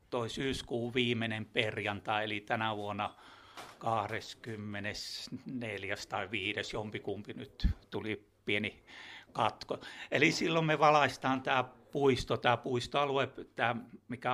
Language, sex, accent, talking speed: Finnish, male, native, 100 wpm